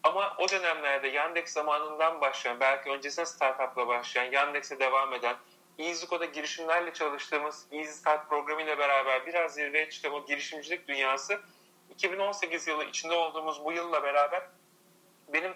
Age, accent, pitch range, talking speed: 40-59, native, 145-180 Hz, 125 wpm